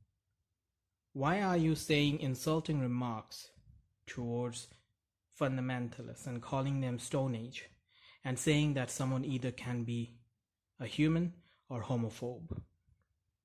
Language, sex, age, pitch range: English, male, 20-39, 115-140 Hz